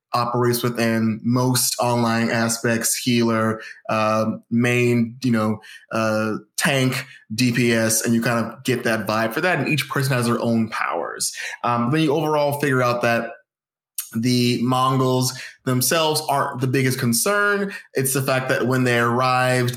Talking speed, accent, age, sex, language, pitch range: 150 wpm, American, 20-39, male, English, 115-130 Hz